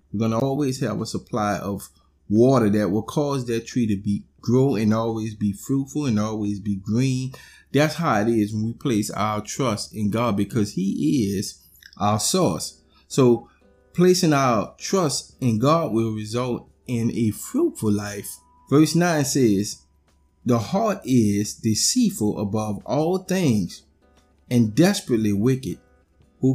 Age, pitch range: 20-39, 105-135 Hz